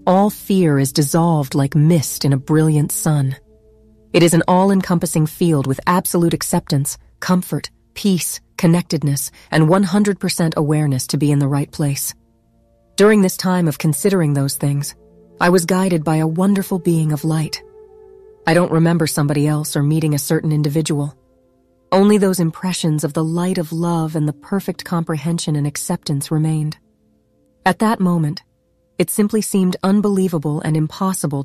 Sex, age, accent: female, 40-59, American